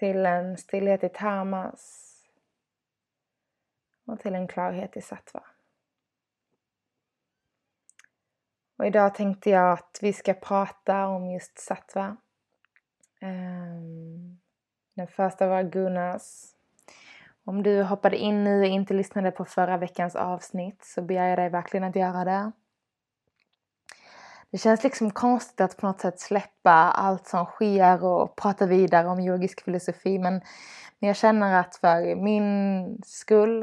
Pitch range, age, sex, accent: 180-200 Hz, 20-39, female, native